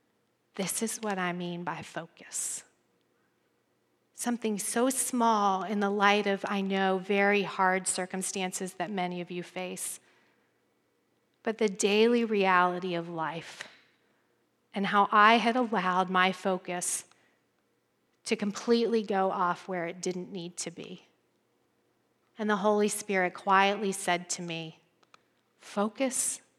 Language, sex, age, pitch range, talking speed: English, female, 40-59, 185-215 Hz, 125 wpm